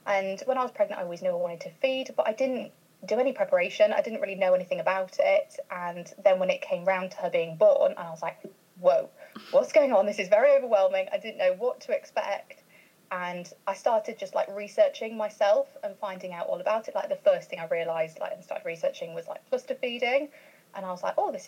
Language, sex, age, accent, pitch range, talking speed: English, female, 30-49, British, 195-295 Hz, 235 wpm